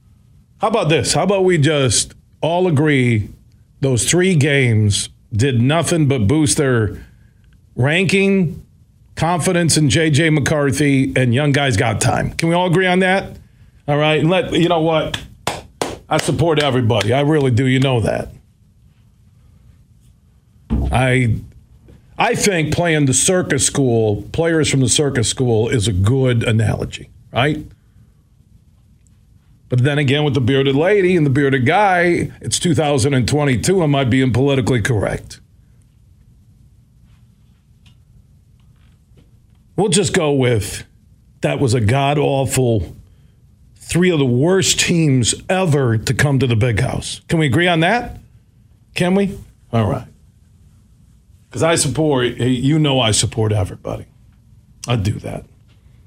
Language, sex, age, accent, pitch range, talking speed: English, male, 50-69, American, 115-150 Hz, 135 wpm